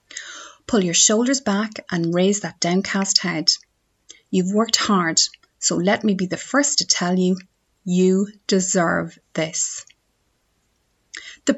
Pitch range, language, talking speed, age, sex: 170-225 Hz, English, 130 wpm, 30-49, female